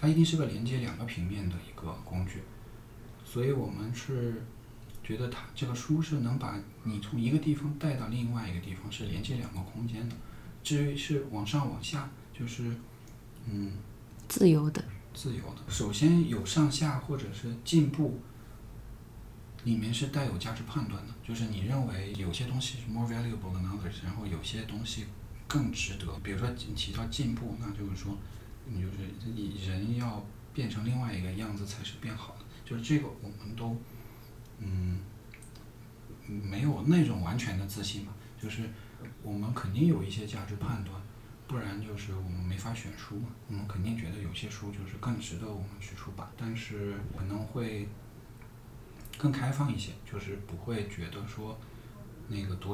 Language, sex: Chinese, male